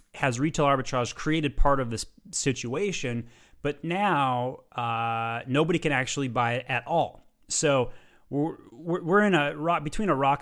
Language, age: English, 30-49